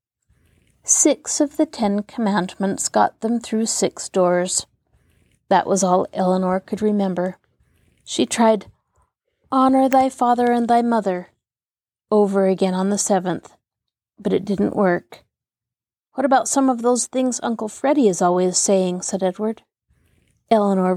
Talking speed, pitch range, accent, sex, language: 135 wpm, 190-235 Hz, American, female, English